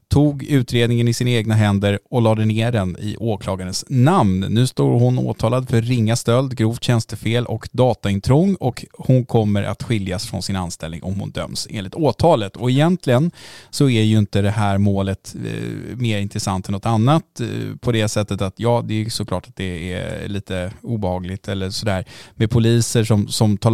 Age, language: 20-39, Swedish